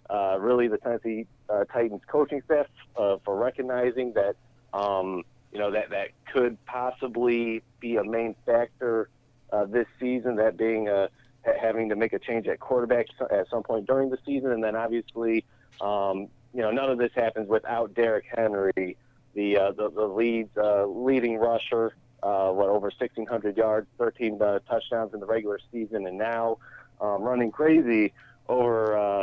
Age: 40-59